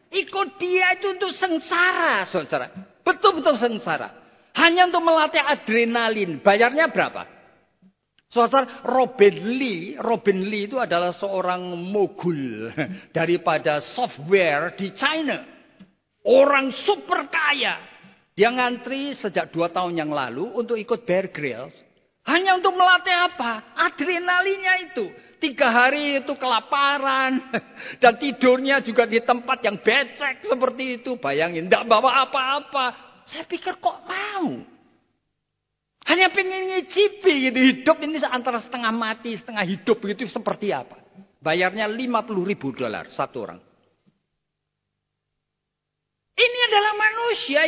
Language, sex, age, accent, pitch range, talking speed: Indonesian, male, 50-69, native, 205-320 Hz, 115 wpm